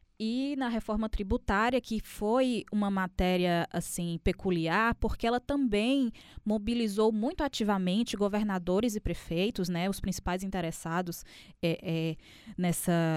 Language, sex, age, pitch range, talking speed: Portuguese, female, 10-29, 175-215 Hz, 105 wpm